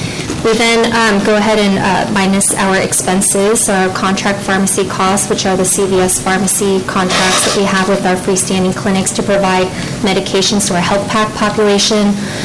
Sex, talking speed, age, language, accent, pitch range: female, 175 wpm, 20-39, English, American, 190-215 Hz